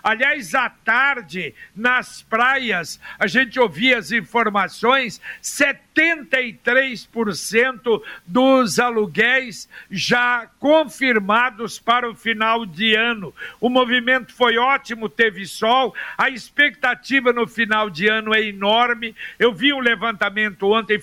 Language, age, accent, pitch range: Portuguese, 60-79, Brazilian, 215-260 Hz